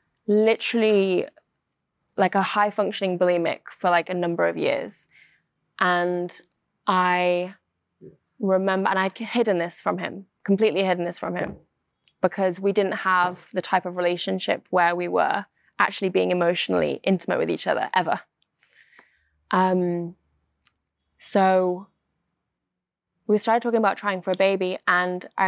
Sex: female